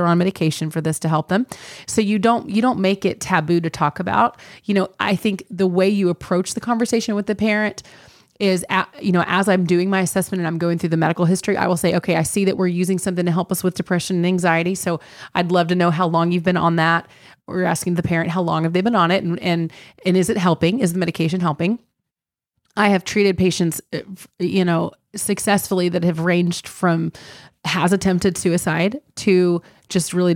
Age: 30-49